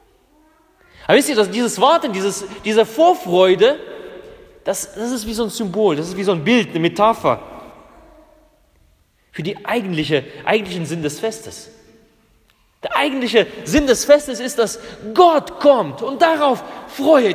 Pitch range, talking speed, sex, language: 170-280 Hz, 150 wpm, male, German